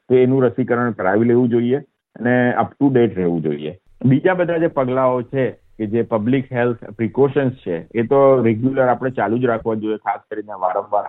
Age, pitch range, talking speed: 50-69, 110-130 Hz, 185 wpm